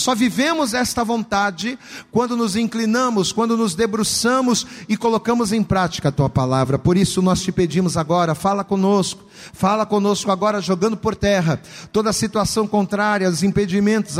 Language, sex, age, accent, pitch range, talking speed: Portuguese, male, 40-59, Brazilian, 180-225 Hz, 150 wpm